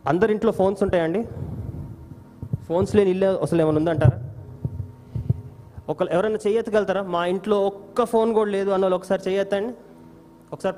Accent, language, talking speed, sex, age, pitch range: native, Telugu, 140 wpm, male, 20-39, 125-180 Hz